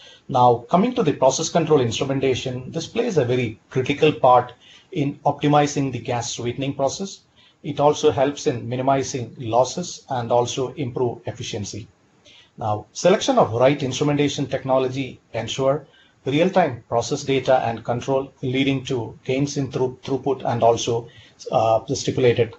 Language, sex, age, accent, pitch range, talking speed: English, male, 30-49, Indian, 115-140 Hz, 135 wpm